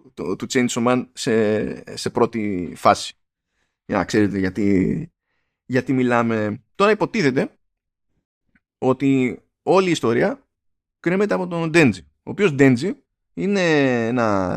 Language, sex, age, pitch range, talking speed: Greek, male, 20-39, 105-155 Hz, 120 wpm